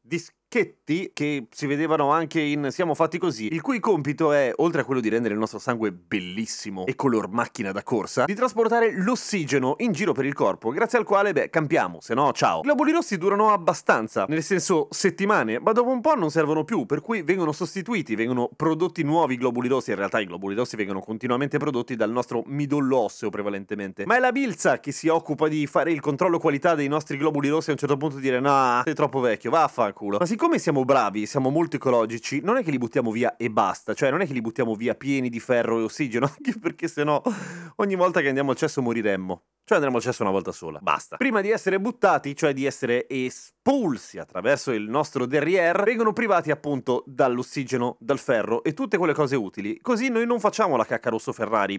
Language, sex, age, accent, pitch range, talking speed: Italian, male, 30-49, native, 120-170 Hz, 210 wpm